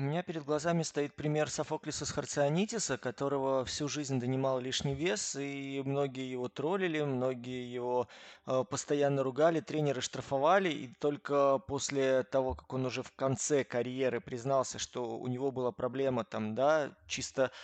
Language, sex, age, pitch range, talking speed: Russian, male, 20-39, 130-150 Hz, 155 wpm